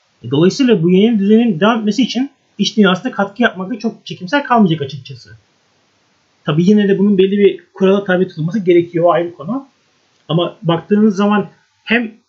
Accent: native